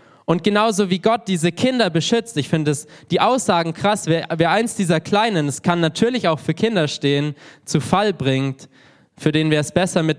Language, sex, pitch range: German, male, 145-195 Hz